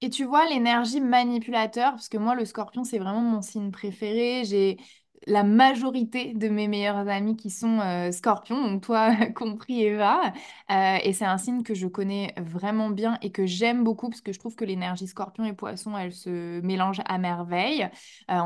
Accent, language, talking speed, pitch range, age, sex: French, French, 190 wpm, 195-240 Hz, 20-39, female